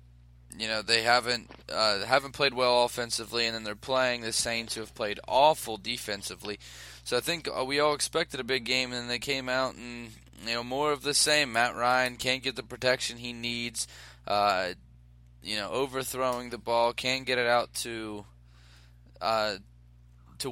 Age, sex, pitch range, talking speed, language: 20-39, male, 110-130 Hz, 185 wpm, English